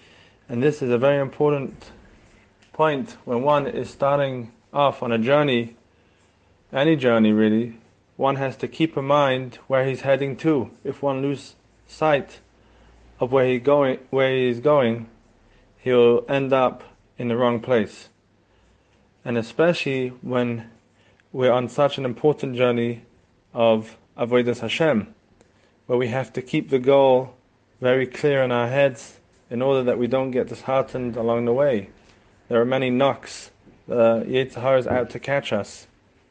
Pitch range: 115-135 Hz